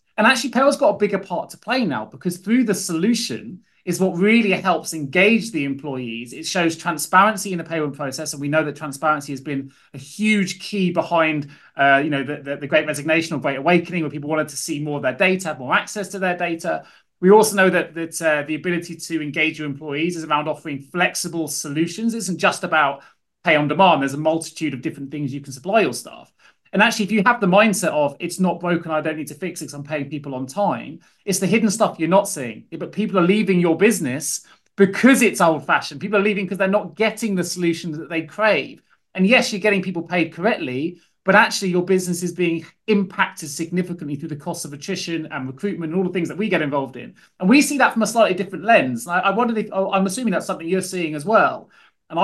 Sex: male